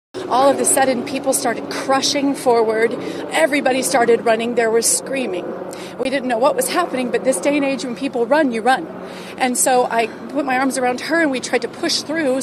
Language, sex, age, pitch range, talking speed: English, female, 30-49, 150-245 Hz, 215 wpm